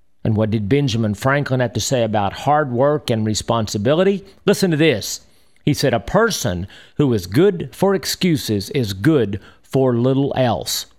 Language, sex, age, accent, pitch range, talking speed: English, male, 50-69, American, 115-180 Hz, 165 wpm